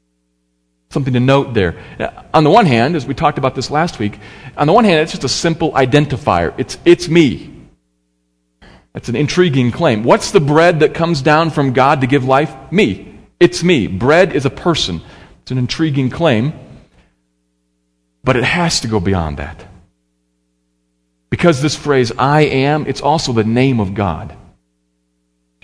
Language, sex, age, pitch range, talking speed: English, male, 40-59, 100-155 Hz, 175 wpm